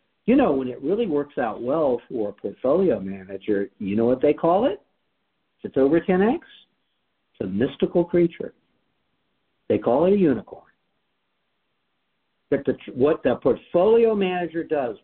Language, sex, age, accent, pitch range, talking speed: English, male, 60-79, American, 130-205 Hz, 145 wpm